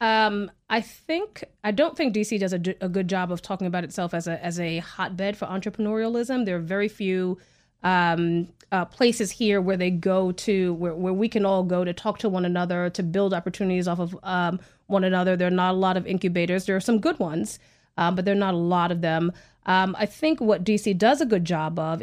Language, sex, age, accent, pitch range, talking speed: English, female, 30-49, American, 175-210 Hz, 230 wpm